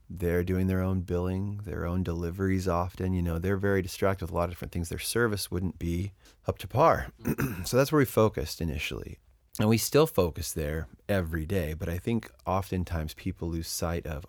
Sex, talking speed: male, 200 wpm